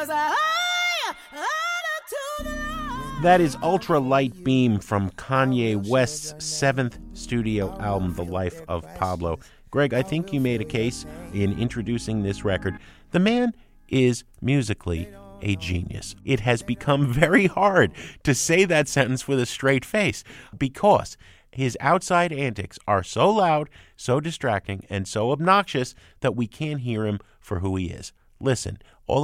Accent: American